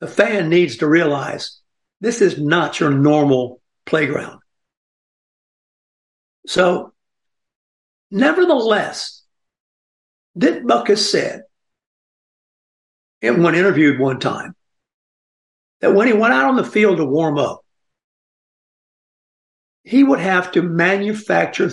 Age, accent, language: 60-79, American, English